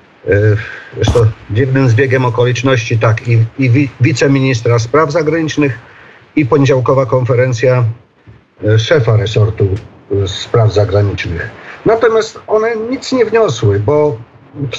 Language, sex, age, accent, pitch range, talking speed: Polish, male, 50-69, native, 115-145 Hz, 100 wpm